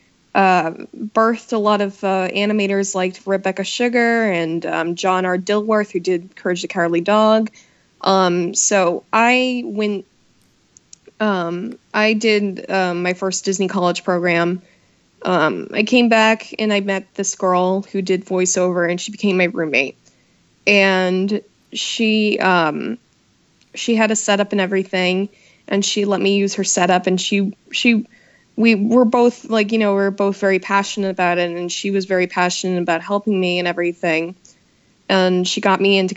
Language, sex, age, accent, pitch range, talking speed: English, female, 20-39, American, 185-215 Hz, 165 wpm